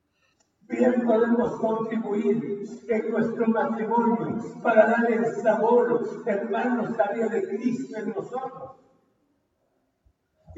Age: 60-79